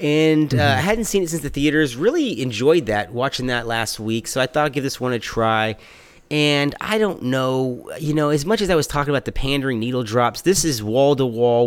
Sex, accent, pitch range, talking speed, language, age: male, American, 115-150 Hz, 225 wpm, English, 30-49